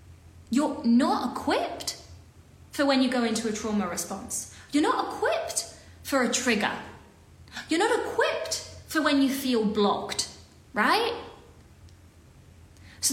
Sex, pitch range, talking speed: female, 195-285 Hz, 125 wpm